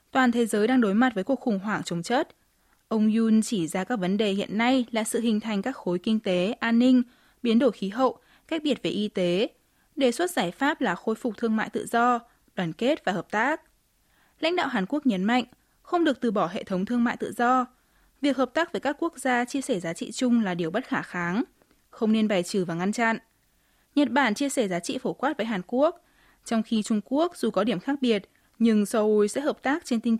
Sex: female